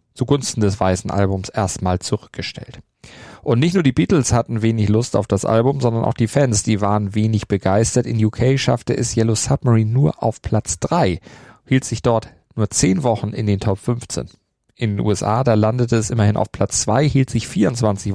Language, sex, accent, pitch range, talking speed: German, male, German, 100-125 Hz, 190 wpm